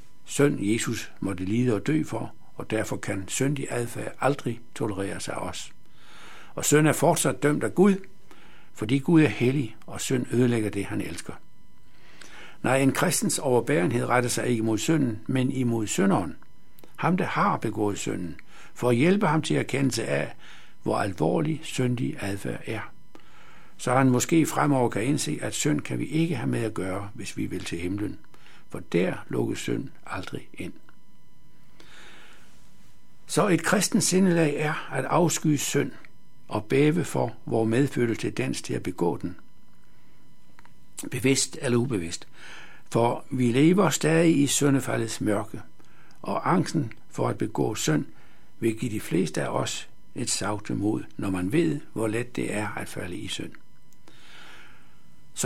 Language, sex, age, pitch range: Danish, male, 60-79, 115-155 Hz